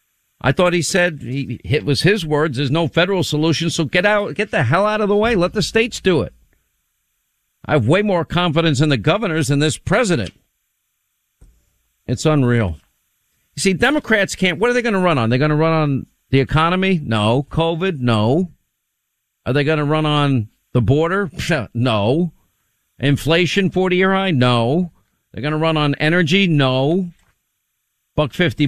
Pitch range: 130-175 Hz